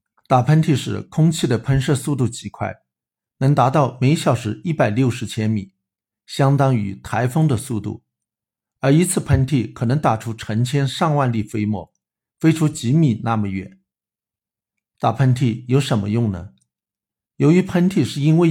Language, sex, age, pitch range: Chinese, male, 50-69, 105-145 Hz